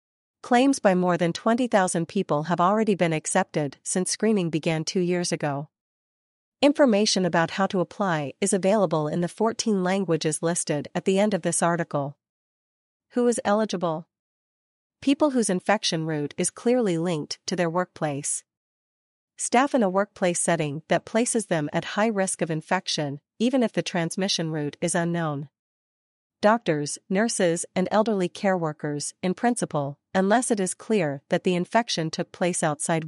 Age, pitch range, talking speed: 40-59, 165-205 Hz, 155 wpm